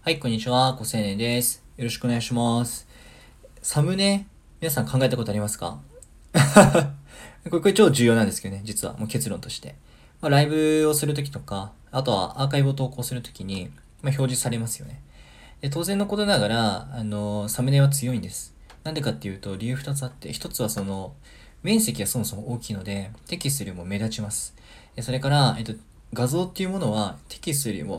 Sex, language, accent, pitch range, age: male, Japanese, native, 105-140 Hz, 20-39